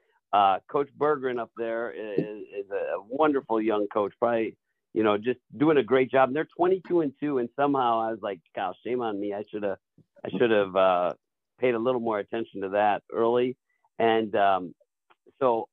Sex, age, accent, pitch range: male, 50-69, American, 105-135 Hz